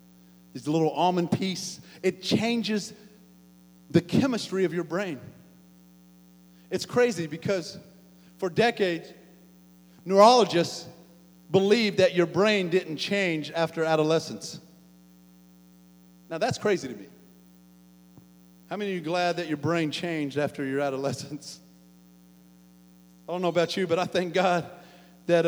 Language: English